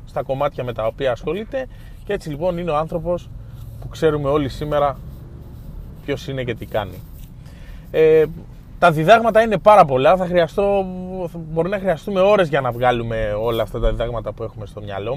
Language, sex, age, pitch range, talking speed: Greek, male, 20-39, 135-185 Hz, 175 wpm